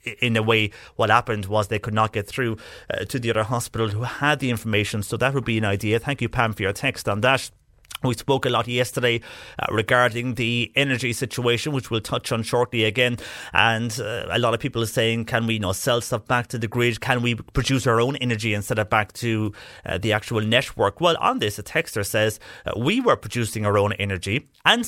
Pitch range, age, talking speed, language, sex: 110-135 Hz, 30-49, 225 wpm, English, male